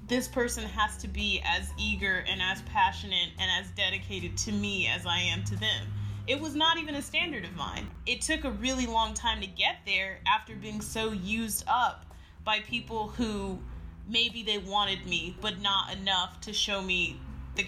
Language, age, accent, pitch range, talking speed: English, 20-39, American, 185-225 Hz, 190 wpm